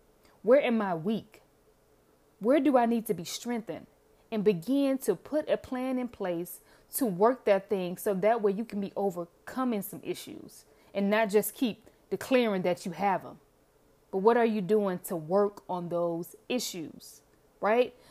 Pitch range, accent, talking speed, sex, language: 190-255 Hz, American, 170 wpm, female, English